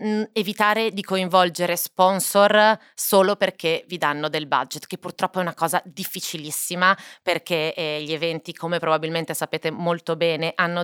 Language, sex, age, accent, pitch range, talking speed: Italian, female, 30-49, native, 150-175 Hz, 145 wpm